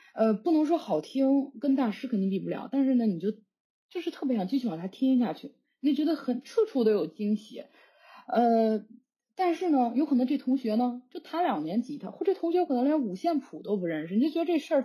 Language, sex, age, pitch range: Chinese, female, 20-39, 195-275 Hz